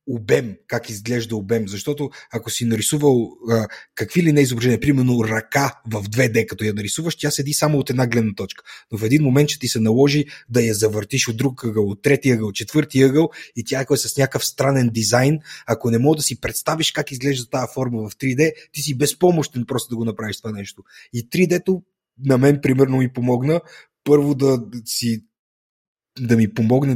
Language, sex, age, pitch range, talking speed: Bulgarian, male, 30-49, 115-145 Hz, 195 wpm